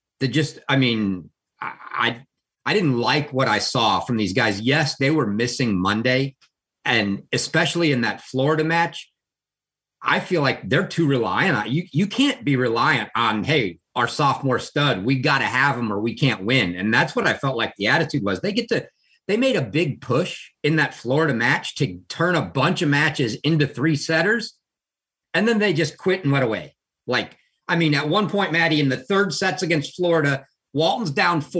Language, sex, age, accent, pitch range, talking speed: English, male, 50-69, American, 130-165 Hz, 200 wpm